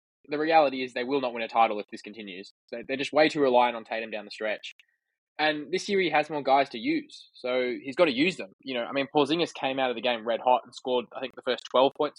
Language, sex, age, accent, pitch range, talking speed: English, male, 20-39, Australian, 120-155 Hz, 280 wpm